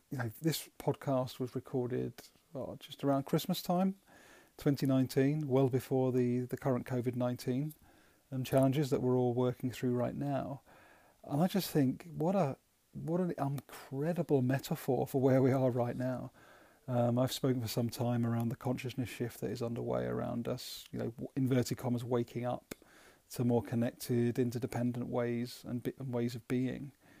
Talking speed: 150 wpm